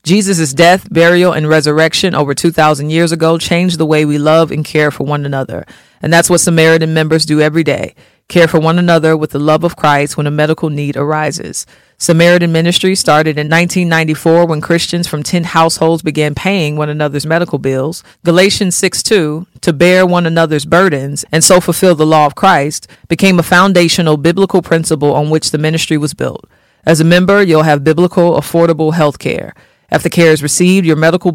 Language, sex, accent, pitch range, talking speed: English, female, American, 150-175 Hz, 185 wpm